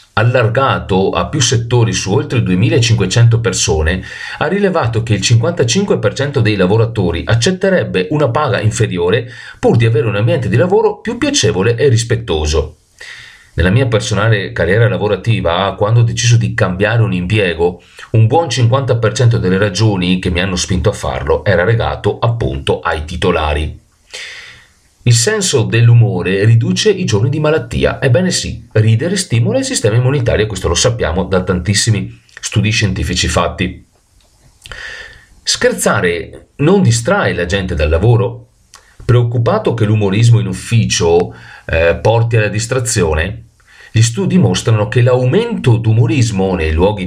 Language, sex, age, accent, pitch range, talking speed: Italian, male, 40-59, native, 95-125 Hz, 135 wpm